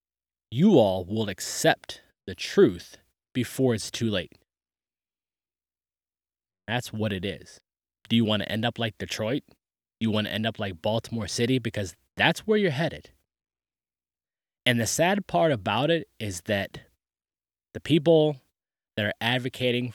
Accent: American